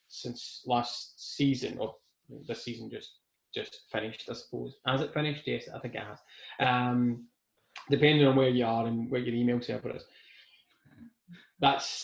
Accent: British